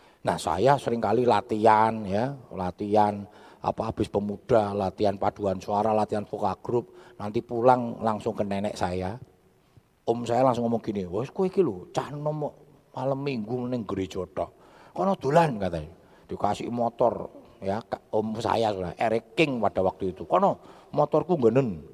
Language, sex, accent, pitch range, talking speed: Indonesian, male, native, 105-165 Hz, 140 wpm